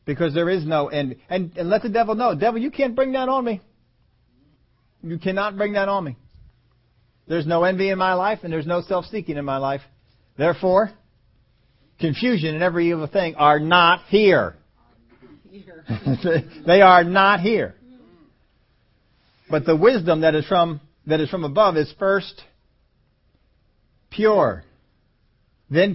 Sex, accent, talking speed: male, American, 150 wpm